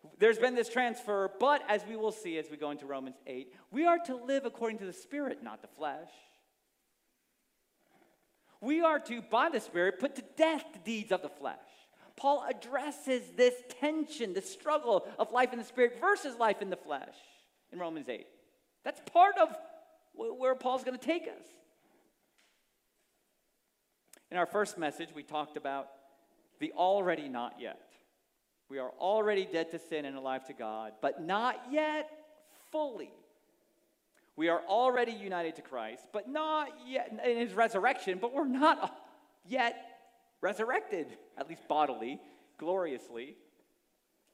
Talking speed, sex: 155 wpm, male